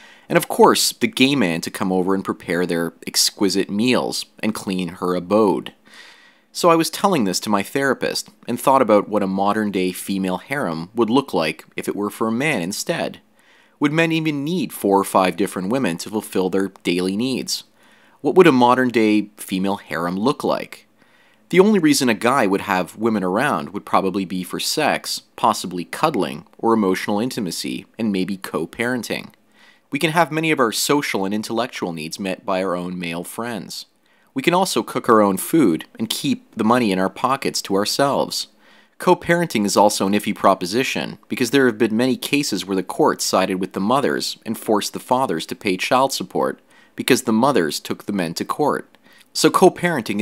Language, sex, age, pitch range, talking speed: English, male, 30-49, 95-130 Hz, 190 wpm